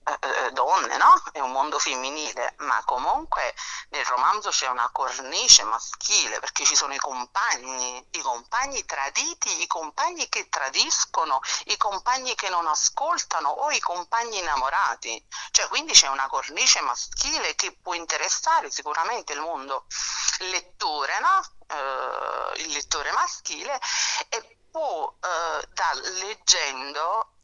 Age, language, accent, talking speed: 40-59, Italian, native, 125 wpm